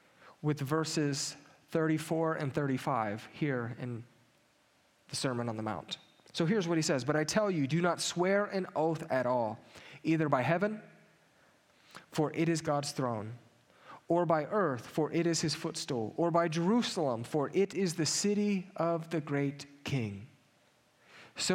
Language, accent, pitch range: English, American, 145-180 Hz